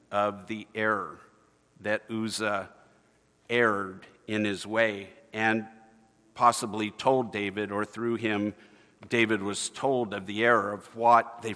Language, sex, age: English, male, 50-69